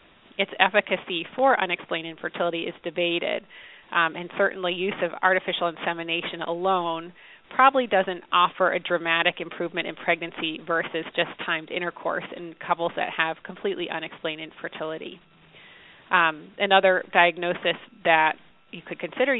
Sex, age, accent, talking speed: female, 30-49, American, 125 wpm